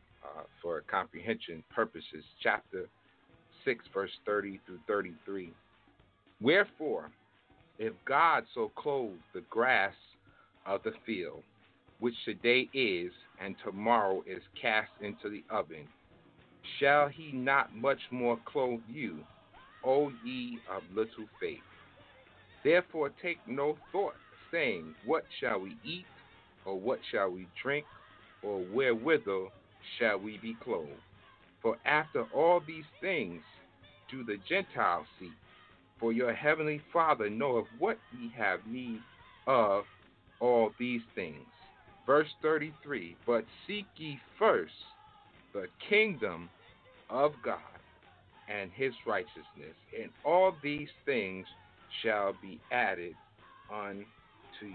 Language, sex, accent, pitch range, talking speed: English, male, American, 100-150 Hz, 115 wpm